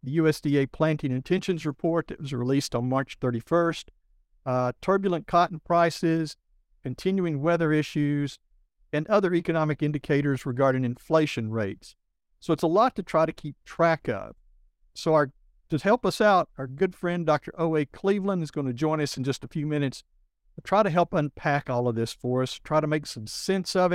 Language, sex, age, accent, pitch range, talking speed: English, male, 50-69, American, 130-165 Hz, 180 wpm